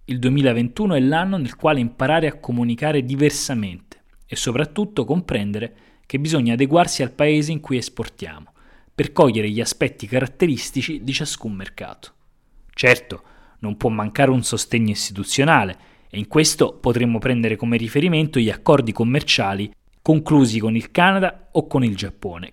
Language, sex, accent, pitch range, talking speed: Italian, male, native, 115-160 Hz, 145 wpm